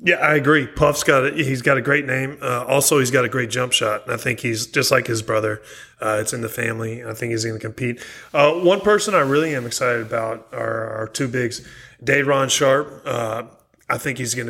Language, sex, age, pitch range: English, male, 30-49, 115-145 Hz